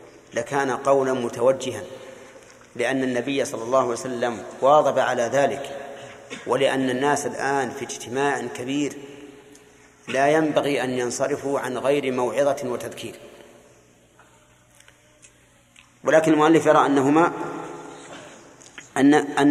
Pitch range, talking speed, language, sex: 120-145 Hz, 95 wpm, Arabic, male